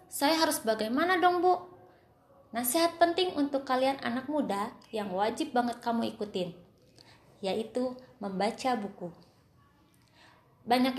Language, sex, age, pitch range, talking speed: Indonesian, female, 20-39, 205-270 Hz, 110 wpm